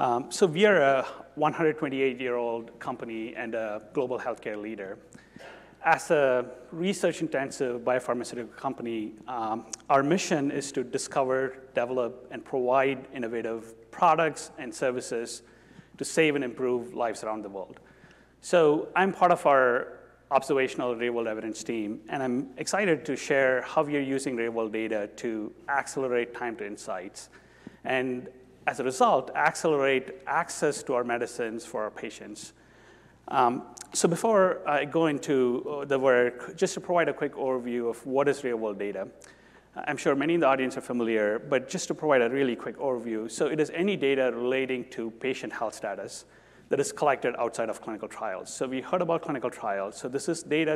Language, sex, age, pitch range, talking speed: English, male, 30-49, 115-150 Hz, 160 wpm